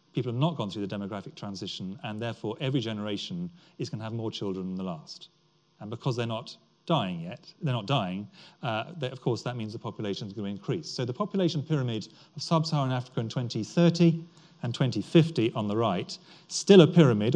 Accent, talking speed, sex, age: British, 205 wpm, male, 40-59